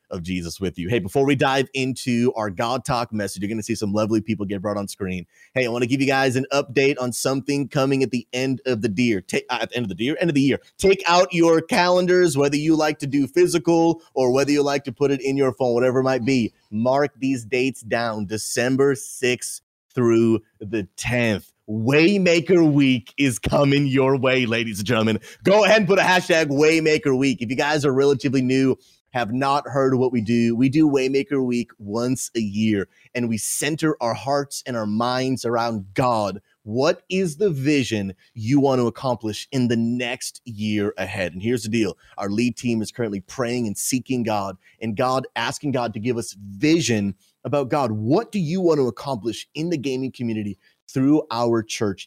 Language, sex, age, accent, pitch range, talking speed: English, male, 30-49, American, 115-140 Hz, 210 wpm